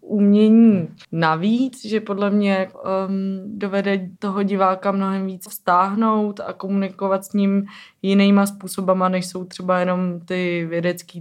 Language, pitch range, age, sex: Czech, 175-190 Hz, 20-39, female